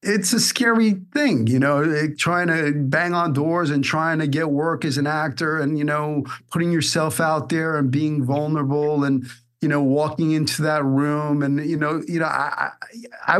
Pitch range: 135-160 Hz